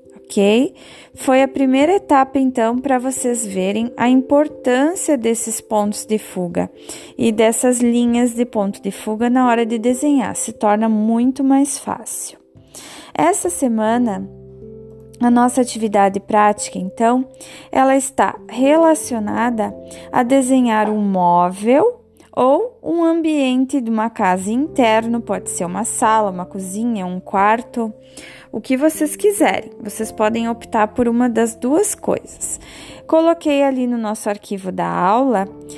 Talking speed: 130 wpm